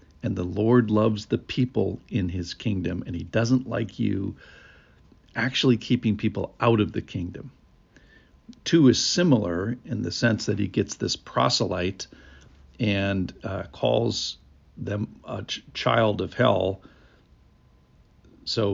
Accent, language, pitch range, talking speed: American, English, 95-120 Hz, 130 wpm